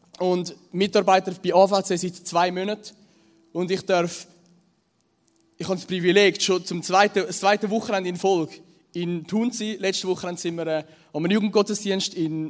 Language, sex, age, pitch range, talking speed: German, male, 20-39, 160-195 Hz, 150 wpm